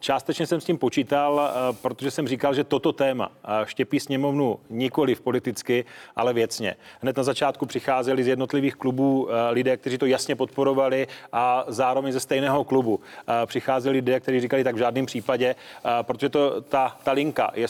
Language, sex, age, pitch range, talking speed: Czech, male, 30-49, 125-140 Hz, 165 wpm